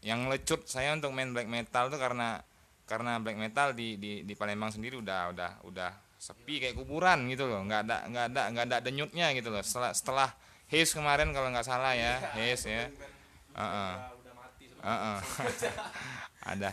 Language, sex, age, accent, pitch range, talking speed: Indonesian, male, 20-39, native, 95-125 Hz, 170 wpm